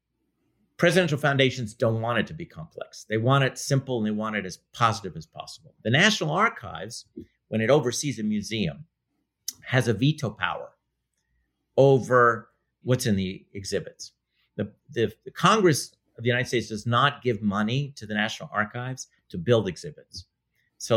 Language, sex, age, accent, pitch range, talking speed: English, male, 50-69, American, 110-150 Hz, 160 wpm